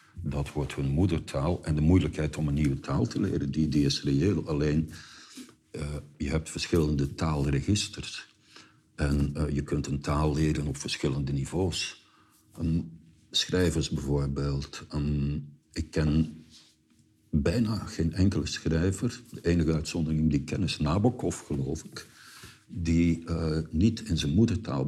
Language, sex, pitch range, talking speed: Dutch, male, 70-80 Hz, 135 wpm